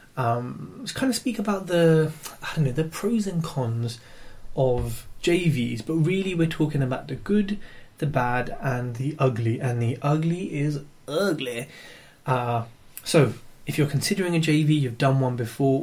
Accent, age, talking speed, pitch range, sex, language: British, 20-39, 165 wpm, 125-160 Hz, male, English